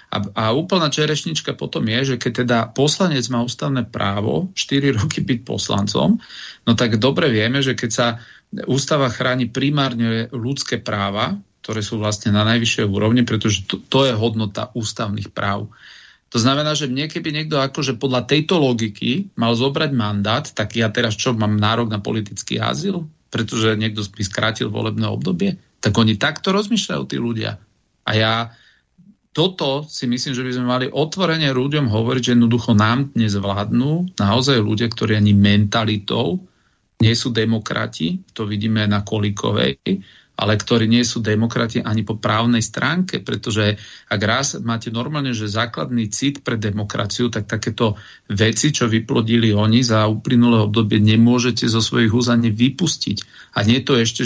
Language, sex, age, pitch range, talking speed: Slovak, male, 40-59, 110-135 Hz, 155 wpm